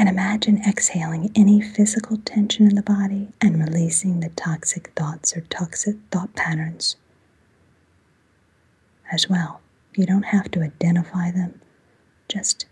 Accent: American